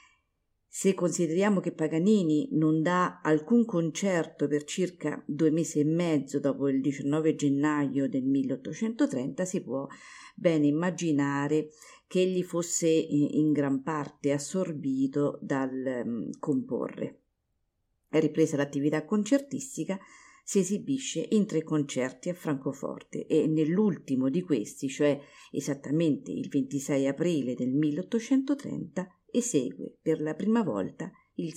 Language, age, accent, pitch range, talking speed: Italian, 50-69, native, 145-180 Hz, 115 wpm